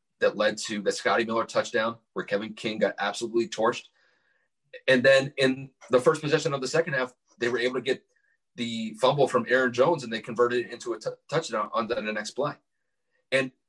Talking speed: 195 wpm